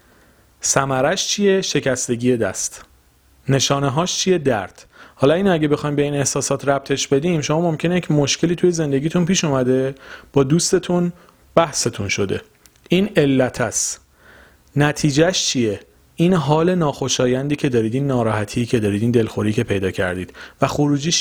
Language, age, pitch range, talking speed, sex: Persian, 40-59, 115-155 Hz, 140 wpm, male